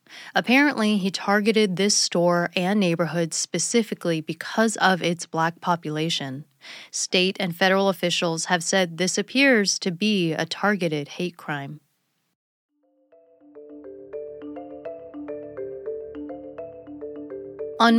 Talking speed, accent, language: 95 wpm, American, English